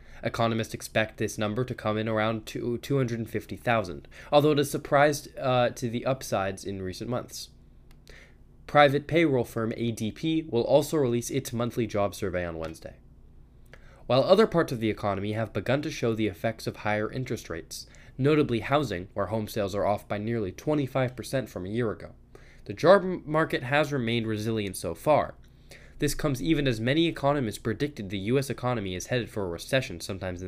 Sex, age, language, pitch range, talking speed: male, 20-39, English, 105-140 Hz, 175 wpm